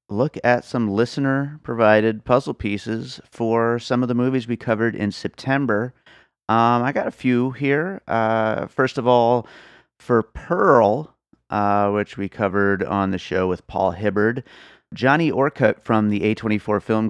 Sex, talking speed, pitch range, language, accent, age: male, 150 wpm, 95-120 Hz, English, American, 30-49